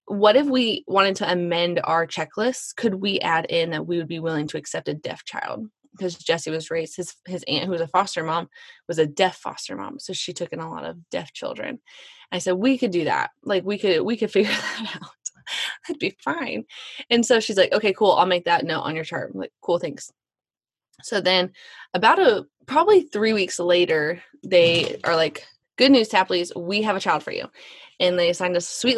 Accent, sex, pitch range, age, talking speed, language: American, female, 170-225 Hz, 20-39, 225 wpm, English